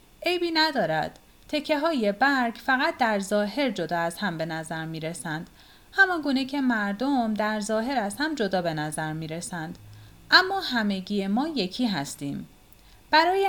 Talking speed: 145 wpm